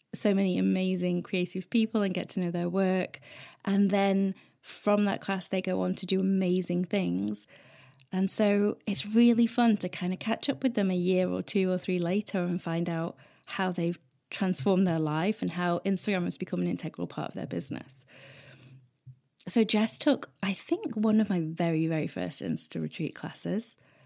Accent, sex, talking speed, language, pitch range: British, female, 185 wpm, English, 160-210 Hz